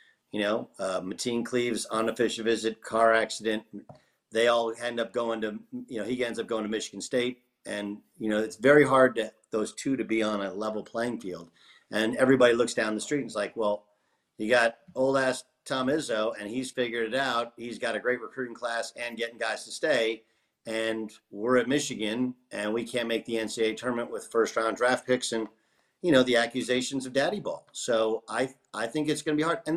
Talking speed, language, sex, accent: 210 wpm, English, male, American